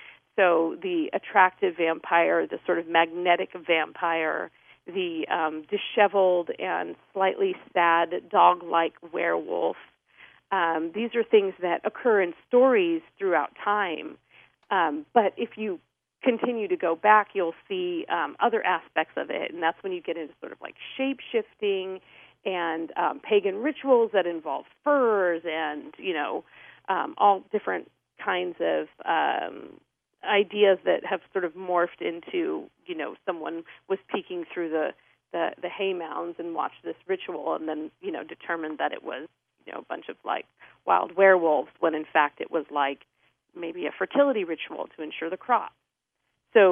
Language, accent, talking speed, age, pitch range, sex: English, American, 155 wpm, 40-59, 170-260 Hz, female